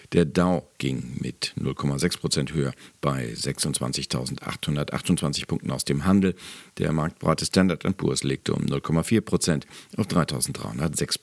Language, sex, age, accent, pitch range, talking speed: German, male, 50-69, German, 70-95 Hz, 125 wpm